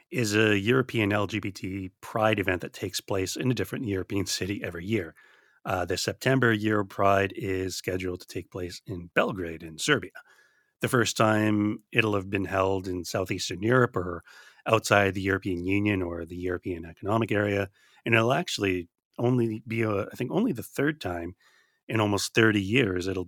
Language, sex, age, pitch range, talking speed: English, male, 30-49, 90-110 Hz, 175 wpm